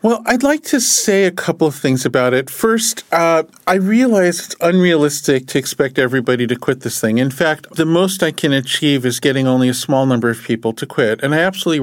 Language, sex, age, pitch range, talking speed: English, male, 50-69, 130-175 Hz, 225 wpm